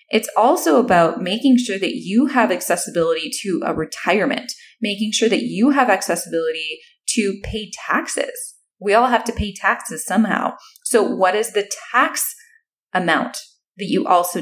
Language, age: English, 20-39